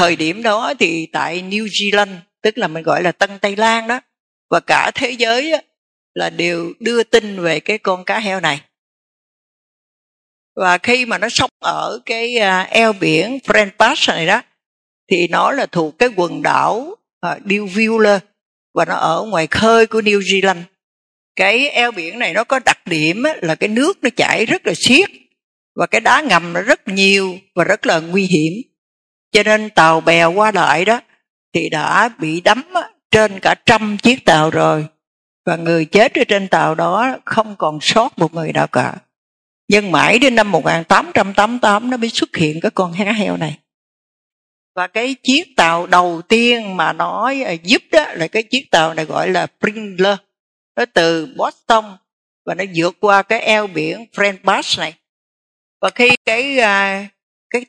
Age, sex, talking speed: 60-79, female, 175 wpm